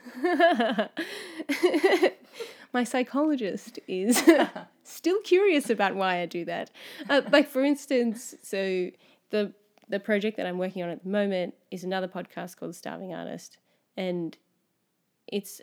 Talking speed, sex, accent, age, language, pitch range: 125 wpm, female, Australian, 30-49, English, 180-230 Hz